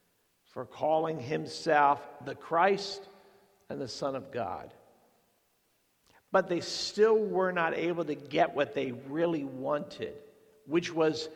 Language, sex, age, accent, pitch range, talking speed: English, male, 50-69, American, 150-195 Hz, 125 wpm